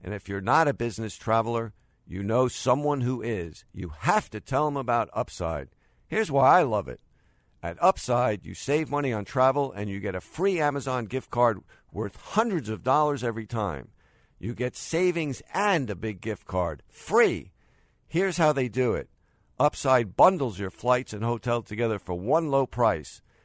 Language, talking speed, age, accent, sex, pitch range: English, 180 wpm, 50-69, American, male, 105-145 Hz